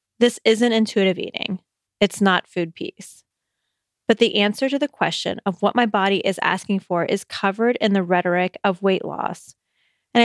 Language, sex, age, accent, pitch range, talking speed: English, female, 30-49, American, 185-220 Hz, 175 wpm